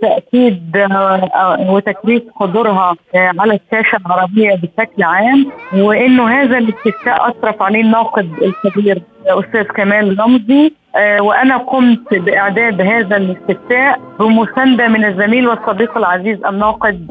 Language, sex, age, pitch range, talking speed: Arabic, female, 30-49, 195-250 Hz, 100 wpm